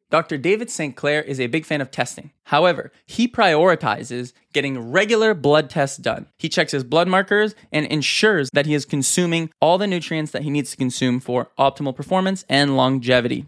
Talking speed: 185 wpm